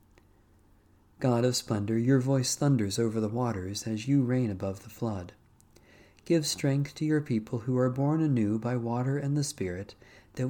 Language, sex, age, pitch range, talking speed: English, male, 40-59, 100-130 Hz, 170 wpm